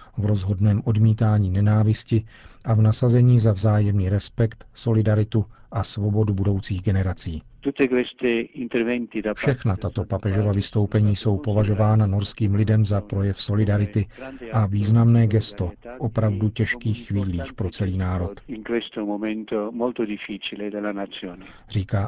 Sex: male